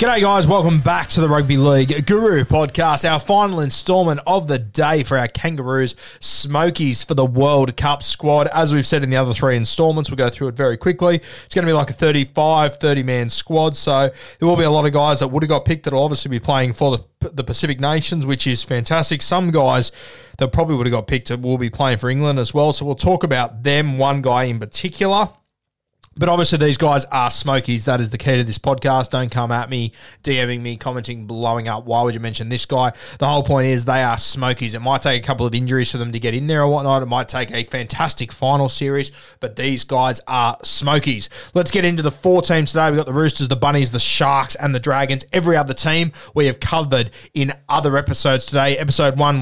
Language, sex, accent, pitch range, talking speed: English, male, Australian, 125-150 Hz, 230 wpm